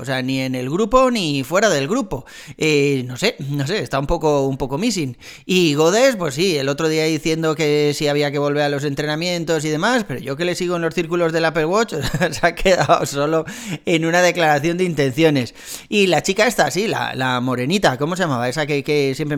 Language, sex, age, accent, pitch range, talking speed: Spanish, male, 30-49, Spanish, 145-185 Hz, 235 wpm